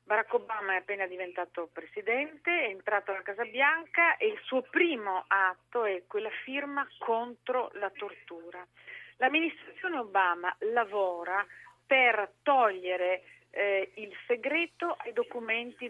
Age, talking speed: 40-59, 120 wpm